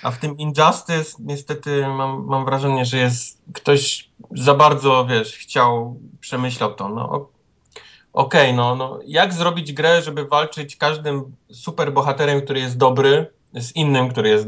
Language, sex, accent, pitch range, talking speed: Polish, male, native, 115-140 Hz, 150 wpm